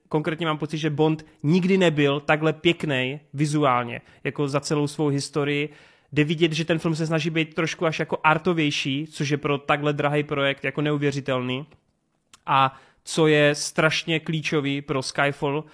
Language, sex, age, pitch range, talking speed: Czech, male, 30-49, 135-155 Hz, 160 wpm